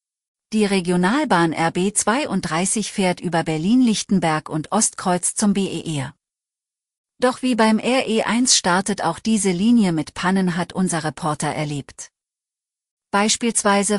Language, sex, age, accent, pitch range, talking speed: German, female, 40-59, German, 165-220 Hz, 105 wpm